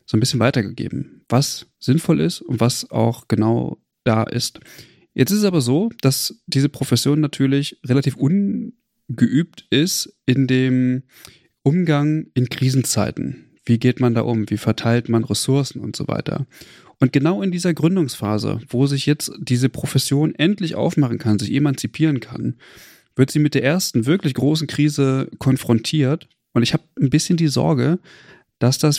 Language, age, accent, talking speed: German, 30-49, German, 155 wpm